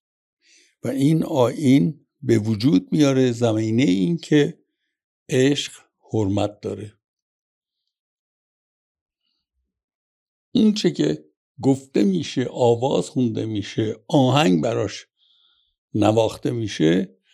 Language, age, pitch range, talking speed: Persian, 60-79, 115-150 Hz, 80 wpm